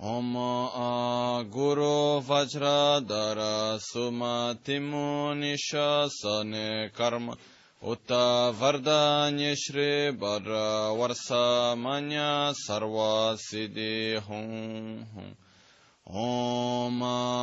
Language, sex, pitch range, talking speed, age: Italian, male, 110-140 Hz, 40 wpm, 20-39